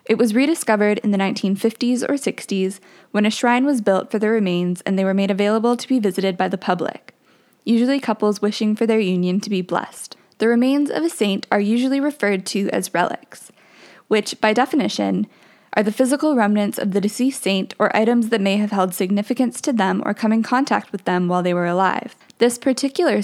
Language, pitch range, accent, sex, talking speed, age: English, 195-240 Hz, American, female, 205 wpm, 20-39